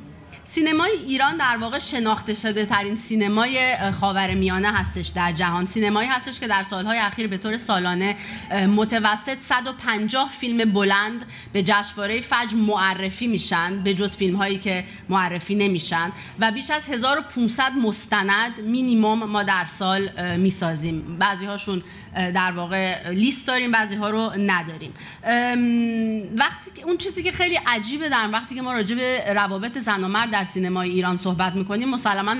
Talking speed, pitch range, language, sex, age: 150 wpm, 185-245 Hz, Persian, female, 30-49